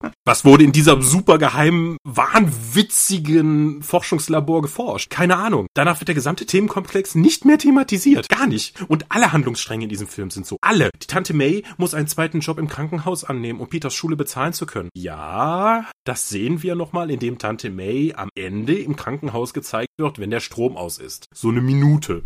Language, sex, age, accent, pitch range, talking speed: German, male, 30-49, German, 130-175 Hz, 180 wpm